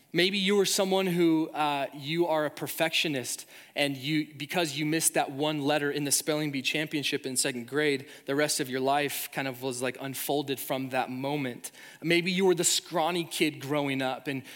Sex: male